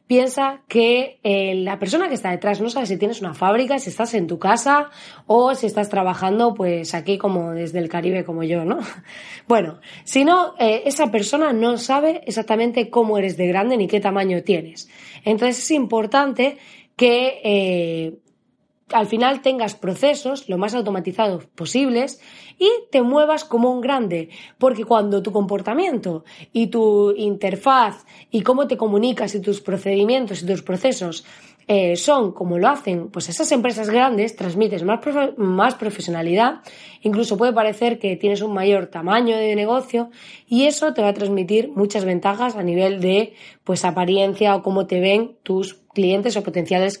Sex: female